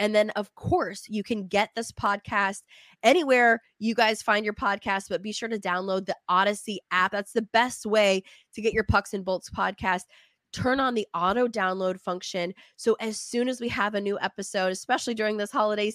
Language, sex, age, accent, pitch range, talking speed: English, female, 20-39, American, 190-230 Hz, 195 wpm